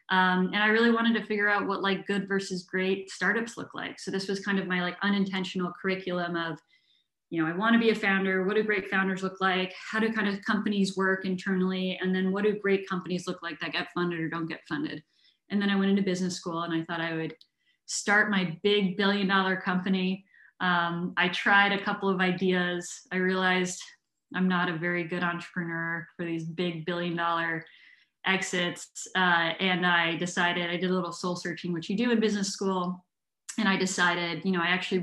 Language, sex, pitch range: English, female, 170-195 Hz